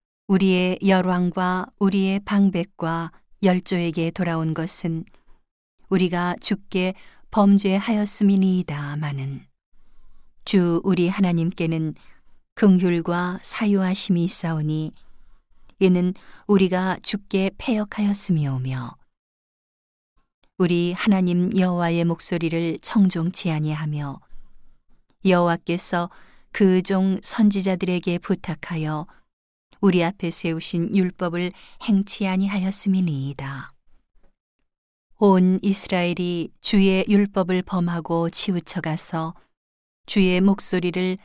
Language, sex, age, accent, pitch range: Korean, female, 40-59, native, 165-195 Hz